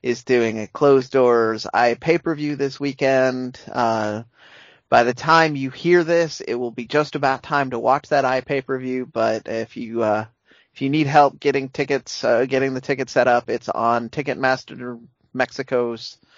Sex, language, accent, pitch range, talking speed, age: male, English, American, 120-145 Hz, 170 wpm, 30-49